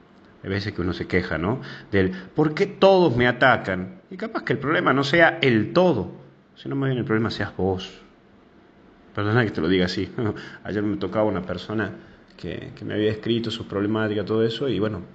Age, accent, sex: 30-49, Argentinian, male